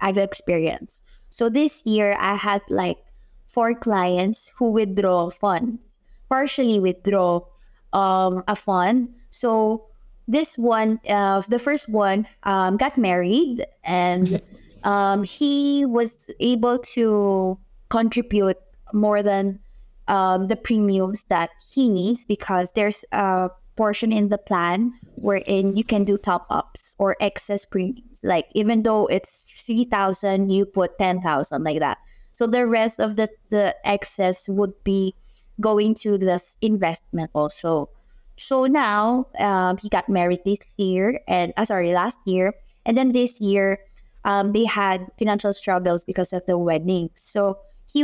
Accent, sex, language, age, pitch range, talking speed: Filipino, female, English, 20-39, 190-225 Hz, 140 wpm